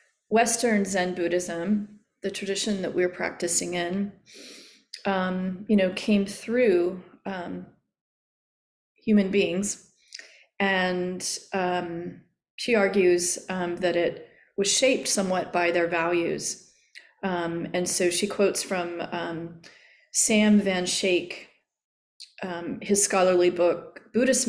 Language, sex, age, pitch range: English, female, 30-49, 175-205 Hz